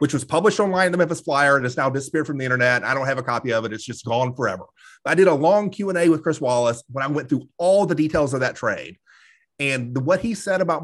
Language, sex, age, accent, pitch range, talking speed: English, male, 30-49, American, 130-180 Hz, 280 wpm